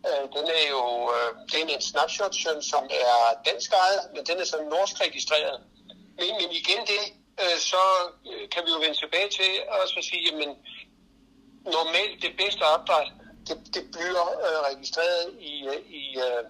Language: Danish